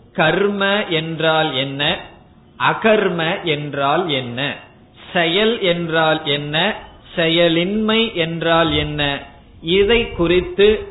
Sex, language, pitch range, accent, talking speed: male, Tamil, 150-195 Hz, native, 70 wpm